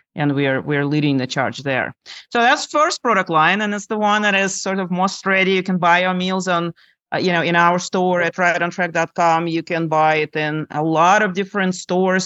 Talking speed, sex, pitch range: 235 wpm, male, 150-185 Hz